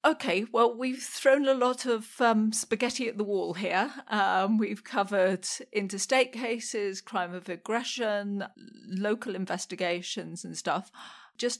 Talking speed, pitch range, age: 135 wpm, 170-210 Hz, 40-59